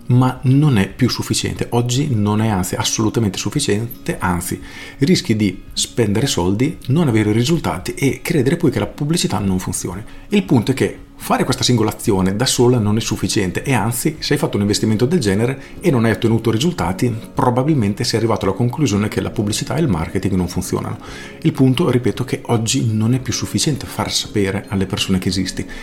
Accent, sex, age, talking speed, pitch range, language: native, male, 40-59, 190 wpm, 100-130 Hz, Italian